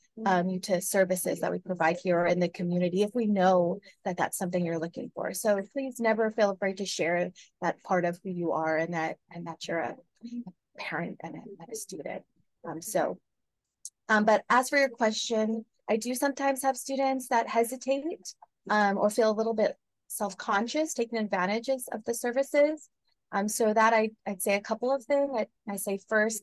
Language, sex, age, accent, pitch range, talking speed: English, female, 20-39, American, 185-235 Hz, 195 wpm